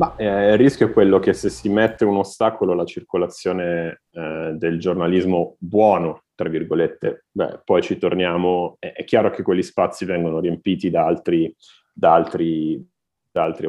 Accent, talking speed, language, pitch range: native, 155 wpm, Italian, 80-95 Hz